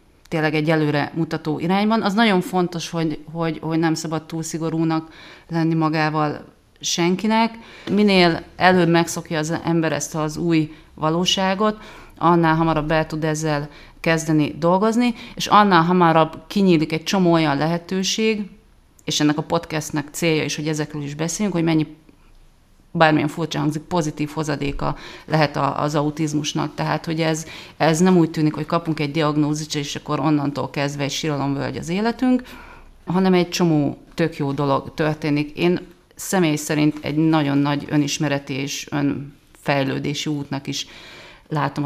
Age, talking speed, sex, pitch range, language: 30-49, 145 wpm, female, 145-170 Hz, Hungarian